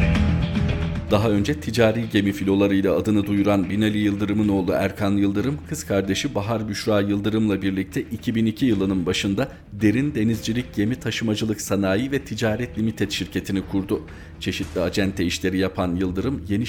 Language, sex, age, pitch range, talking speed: Turkish, male, 40-59, 95-115 Hz, 135 wpm